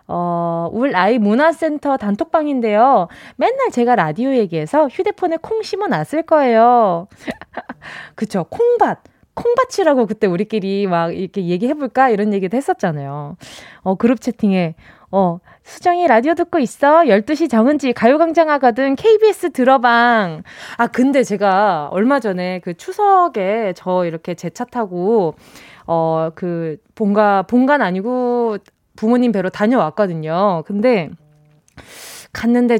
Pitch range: 190-280 Hz